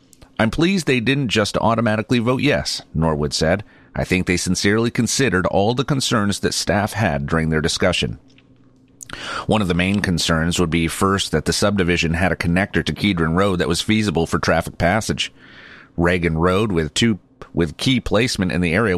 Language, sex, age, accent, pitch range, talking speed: English, male, 40-59, American, 85-110 Hz, 180 wpm